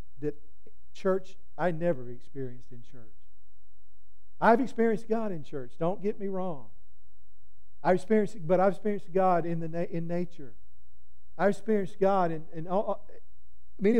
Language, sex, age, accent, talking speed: English, male, 50-69, American, 135 wpm